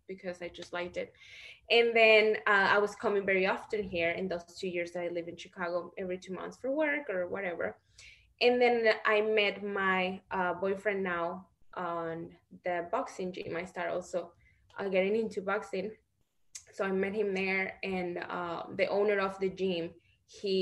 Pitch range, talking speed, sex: 180-225 Hz, 180 wpm, female